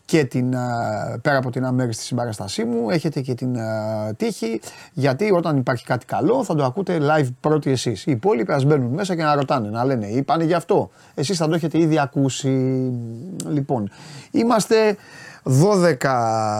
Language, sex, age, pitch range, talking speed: Greek, male, 30-49, 120-150 Hz, 165 wpm